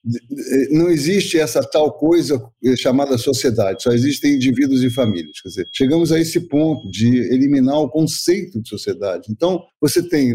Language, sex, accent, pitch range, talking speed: Portuguese, male, Brazilian, 125-170 Hz, 155 wpm